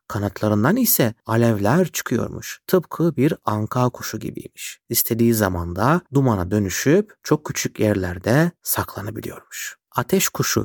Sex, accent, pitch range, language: male, native, 105-145 Hz, Turkish